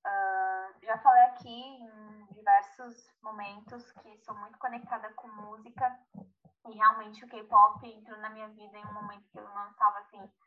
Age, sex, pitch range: 10-29, female, 210-255 Hz